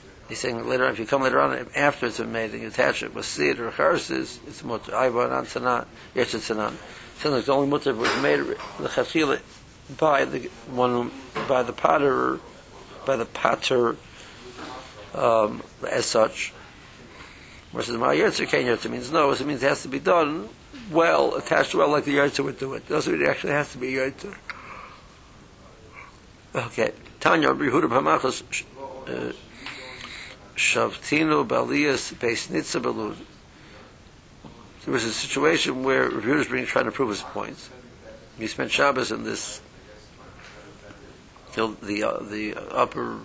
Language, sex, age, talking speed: English, male, 60-79, 145 wpm